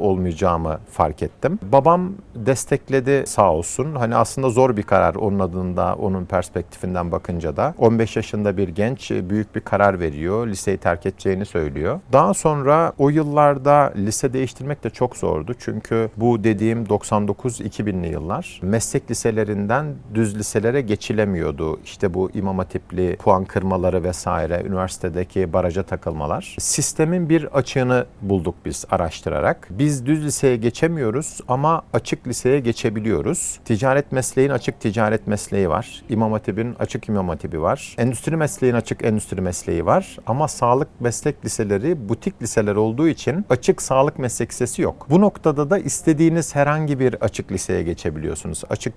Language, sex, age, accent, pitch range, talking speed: Turkish, male, 50-69, native, 95-140 Hz, 135 wpm